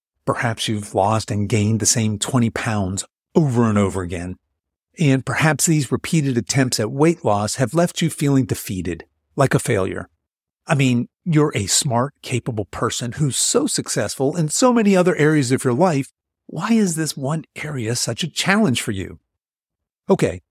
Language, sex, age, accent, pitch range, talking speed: English, male, 50-69, American, 105-155 Hz, 170 wpm